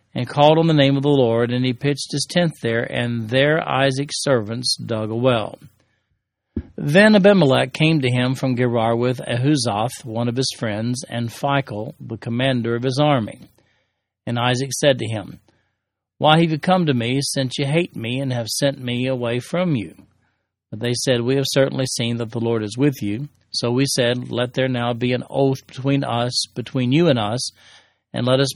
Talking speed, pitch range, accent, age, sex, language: 195 wpm, 120-140 Hz, American, 40-59, male, English